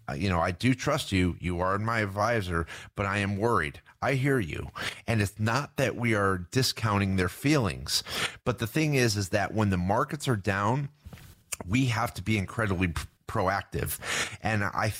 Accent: American